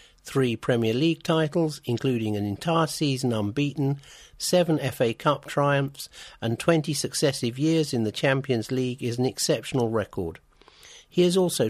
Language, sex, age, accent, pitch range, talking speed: English, male, 50-69, British, 115-150 Hz, 145 wpm